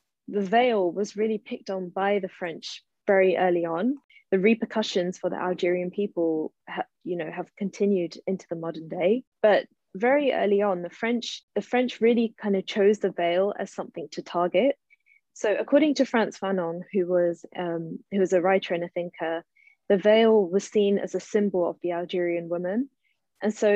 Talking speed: 185 wpm